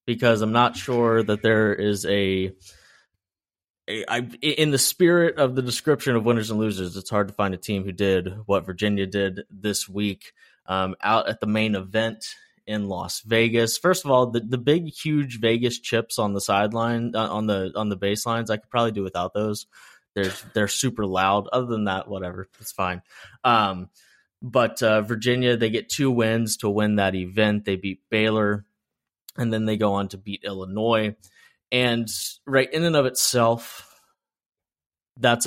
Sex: male